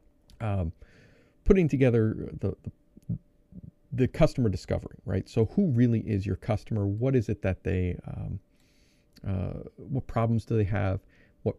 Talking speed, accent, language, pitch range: 145 wpm, American, English, 100-125 Hz